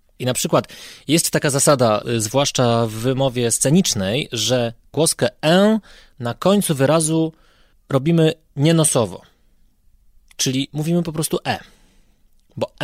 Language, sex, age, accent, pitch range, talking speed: Polish, male, 20-39, native, 120-160 Hz, 110 wpm